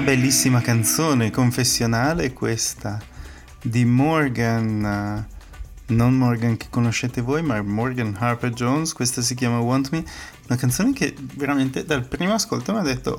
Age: 30-49